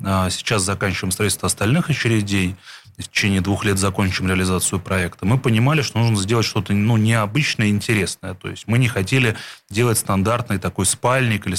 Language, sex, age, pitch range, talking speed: Russian, male, 30-49, 100-125 Hz, 160 wpm